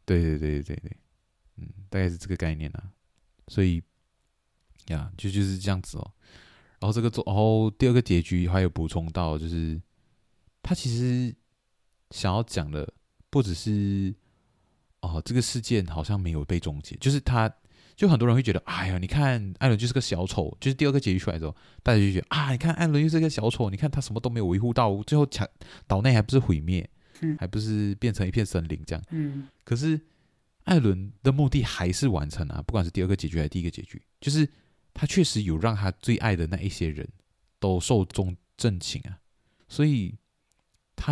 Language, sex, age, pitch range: Chinese, male, 20-39, 90-125 Hz